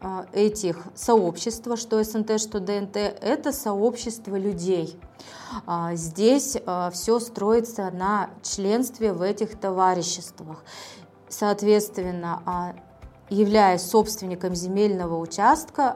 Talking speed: 85 wpm